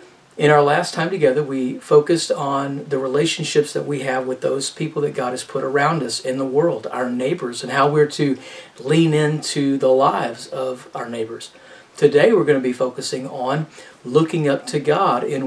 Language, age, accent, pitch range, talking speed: English, 40-59, American, 130-155 Hz, 195 wpm